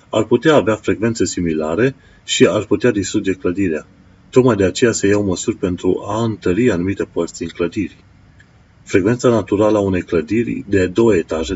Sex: male